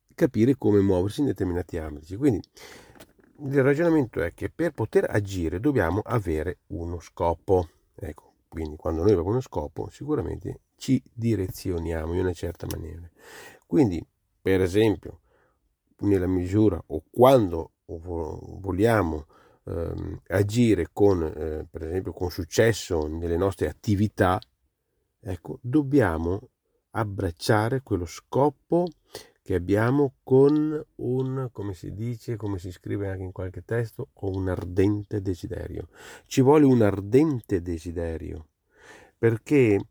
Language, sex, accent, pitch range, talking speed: Italian, male, native, 90-130 Hz, 120 wpm